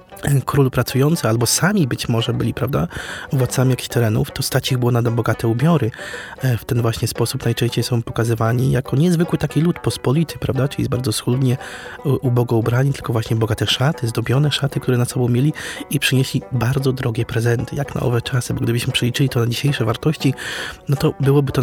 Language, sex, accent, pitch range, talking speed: Polish, male, native, 120-135 Hz, 185 wpm